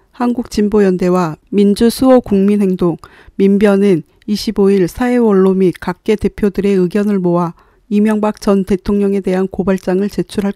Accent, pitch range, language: native, 185-215 Hz, Korean